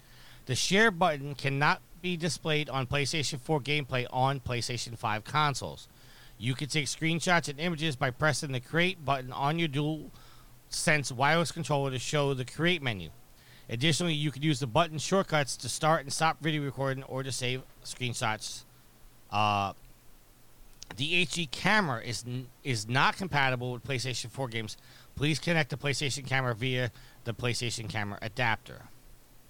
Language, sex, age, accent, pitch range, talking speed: English, male, 40-59, American, 125-155 Hz, 150 wpm